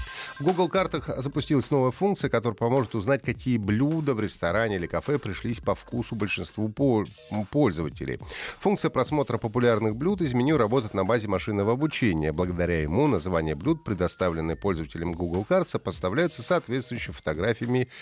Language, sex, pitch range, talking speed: Russian, male, 95-140 Hz, 140 wpm